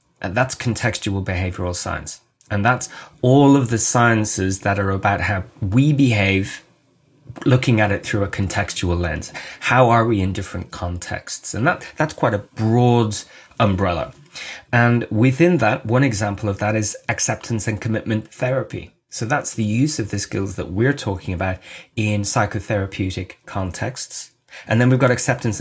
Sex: male